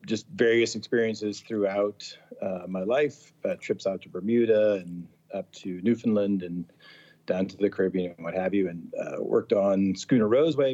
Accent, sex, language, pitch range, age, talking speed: American, male, English, 95-120 Hz, 40-59, 175 wpm